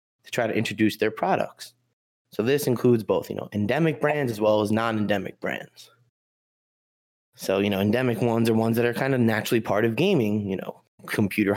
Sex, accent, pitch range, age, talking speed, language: male, American, 105-125 Hz, 20-39, 190 wpm, English